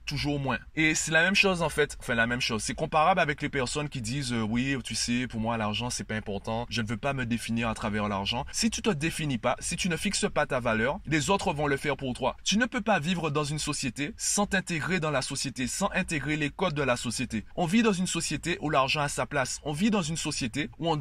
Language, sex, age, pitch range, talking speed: French, male, 20-39, 130-175 Hz, 270 wpm